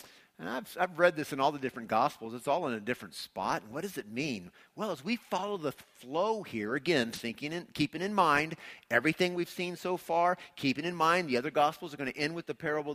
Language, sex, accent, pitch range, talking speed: English, male, American, 135-195 Hz, 240 wpm